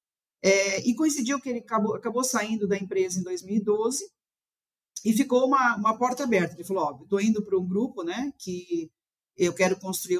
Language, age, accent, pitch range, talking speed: Portuguese, 50-69, Brazilian, 180-230 Hz, 190 wpm